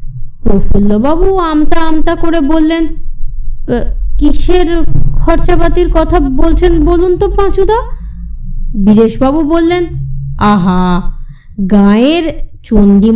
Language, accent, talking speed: Bengali, native, 75 wpm